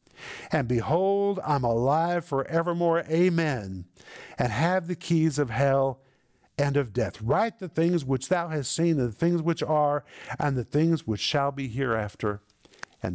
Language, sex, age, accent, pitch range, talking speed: English, male, 50-69, American, 110-145 Hz, 160 wpm